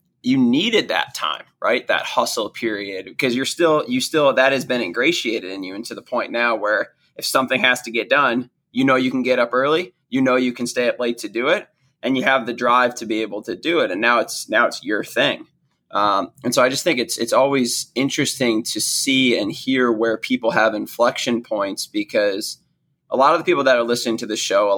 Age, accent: 20-39, American